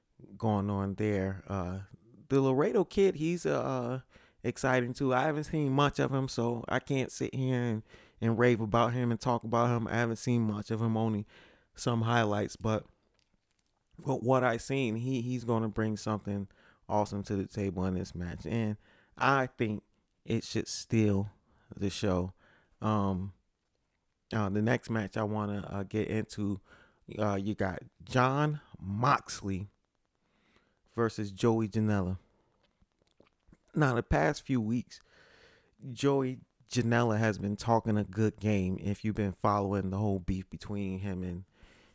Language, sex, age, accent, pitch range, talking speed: English, male, 30-49, American, 100-120 Hz, 155 wpm